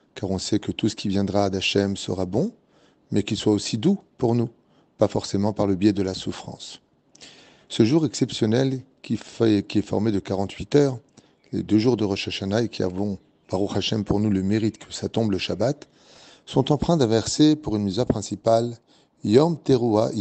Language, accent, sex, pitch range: French, French, male, 100-135 Hz